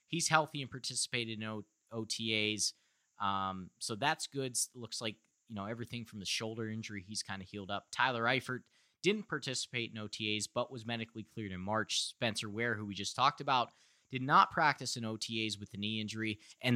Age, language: 20-39, English